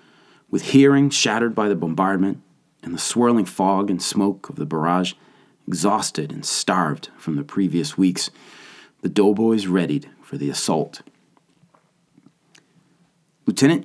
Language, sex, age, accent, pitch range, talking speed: English, male, 30-49, American, 85-110 Hz, 125 wpm